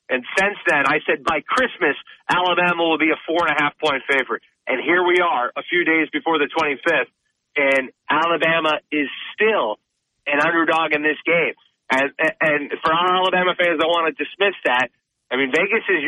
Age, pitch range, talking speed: 30-49, 150-180 Hz, 175 wpm